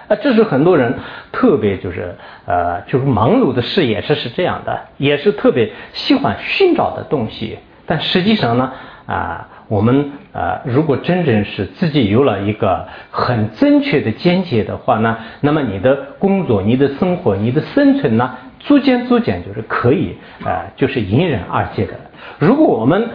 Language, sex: English, male